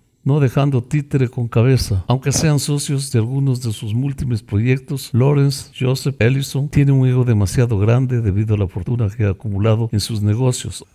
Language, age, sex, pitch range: Spanish, 60-79, male, 100-125 Hz